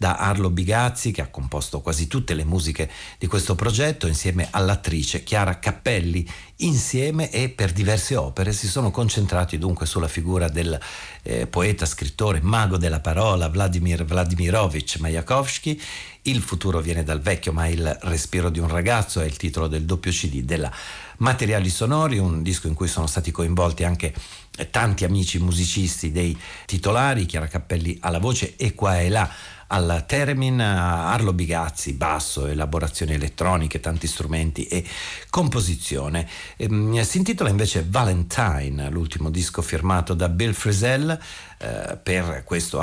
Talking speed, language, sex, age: 150 wpm, Italian, male, 50-69